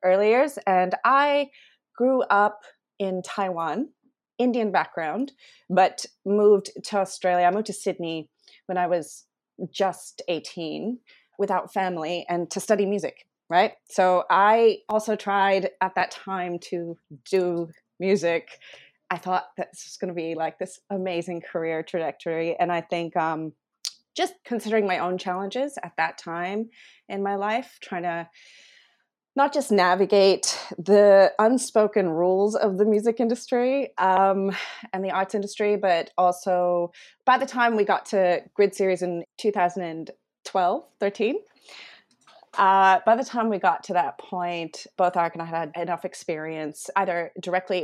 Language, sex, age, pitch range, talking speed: English, female, 30-49, 175-210 Hz, 145 wpm